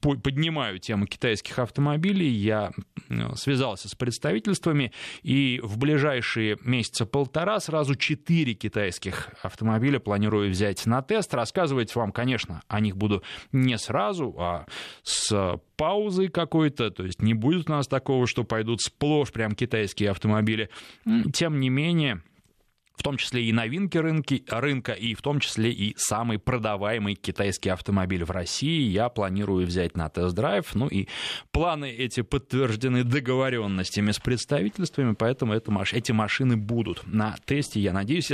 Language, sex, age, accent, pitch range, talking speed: Russian, male, 20-39, native, 100-135 Hz, 135 wpm